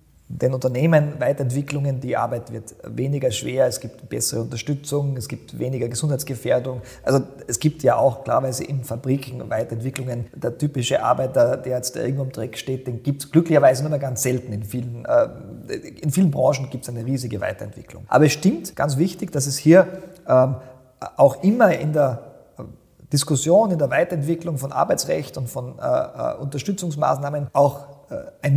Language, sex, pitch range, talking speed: German, male, 130-170 Hz, 160 wpm